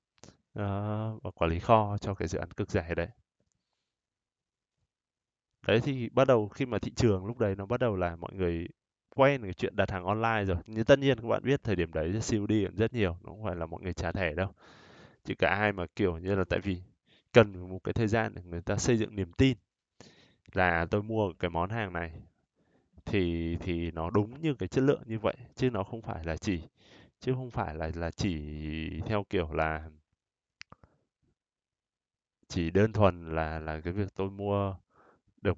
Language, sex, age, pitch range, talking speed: Vietnamese, male, 20-39, 90-115 Hz, 200 wpm